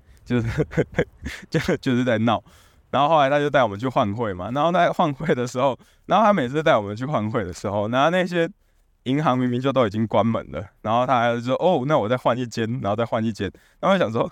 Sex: male